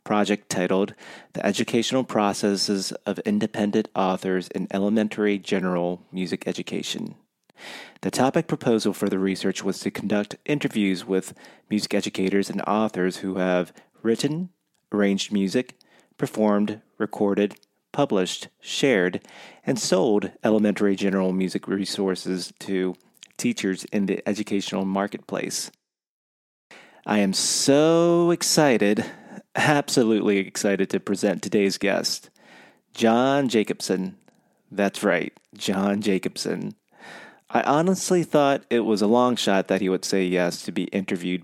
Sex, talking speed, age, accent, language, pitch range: male, 115 wpm, 30-49, American, English, 95-110 Hz